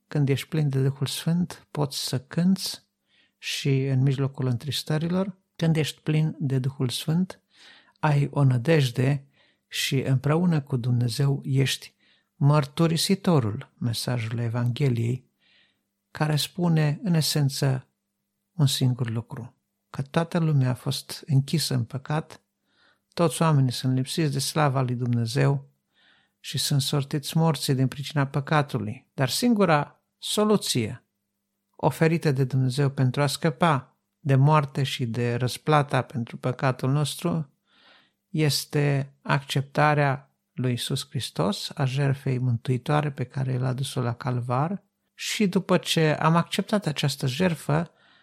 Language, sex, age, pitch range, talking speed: Romanian, male, 50-69, 130-155 Hz, 125 wpm